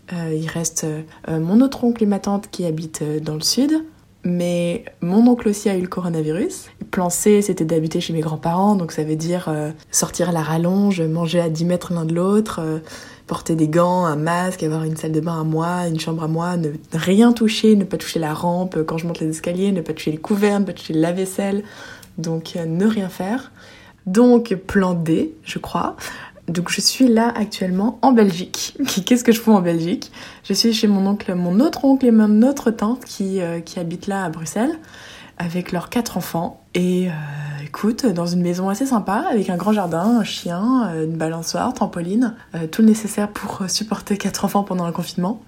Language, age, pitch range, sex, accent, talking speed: English, 20-39, 165-215 Hz, female, French, 205 wpm